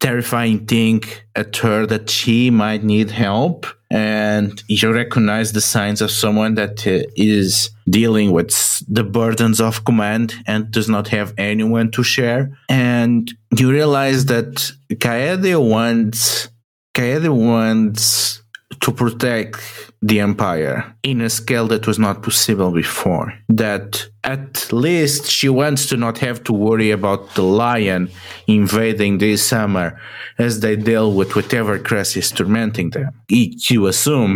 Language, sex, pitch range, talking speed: English, male, 105-120 Hz, 135 wpm